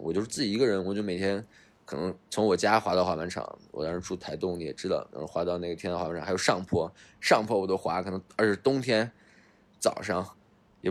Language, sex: Chinese, male